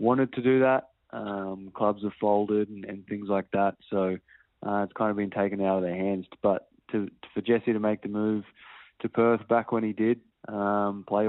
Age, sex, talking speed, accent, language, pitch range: 20-39, male, 220 wpm, Australian, English, 95-110 Hz